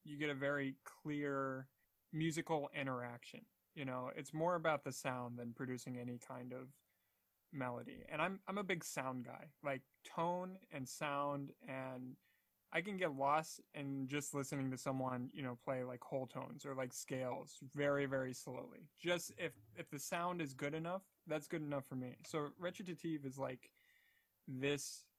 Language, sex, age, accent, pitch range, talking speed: English, male, 20-39, American, 125-150 Hz, 170 wpm